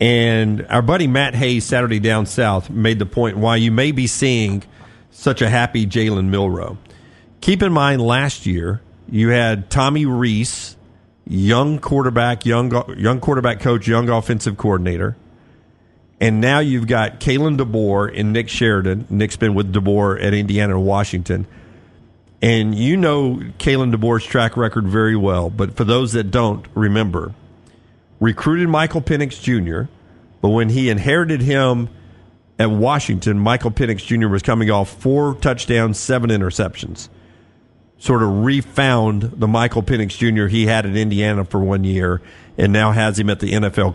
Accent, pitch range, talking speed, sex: American, 105-125 Hz, 155 wpm, male